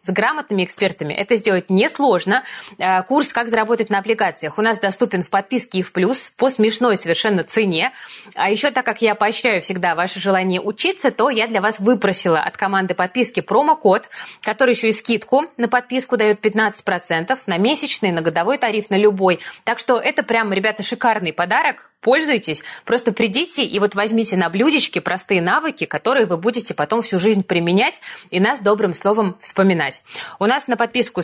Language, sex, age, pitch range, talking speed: Russian, female, 20-39, 190-245 Hz, 175 wpm